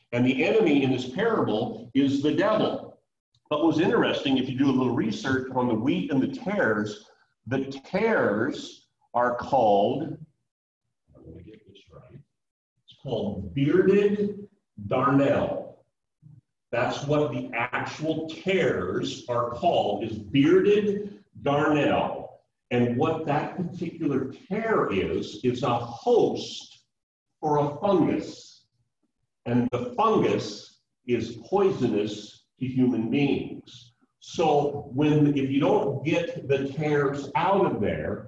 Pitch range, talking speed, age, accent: 120-150 Hz, 125 wpm, 50-69, American